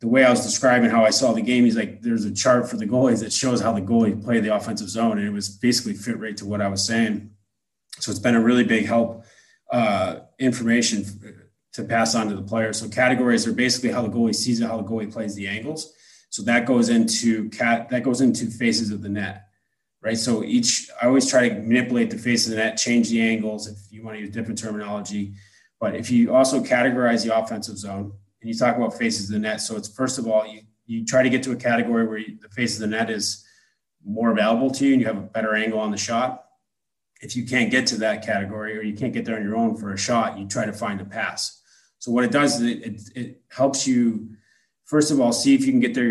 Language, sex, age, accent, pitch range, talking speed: English, male, 20-39, American, 105-120 Hz, 250 wpm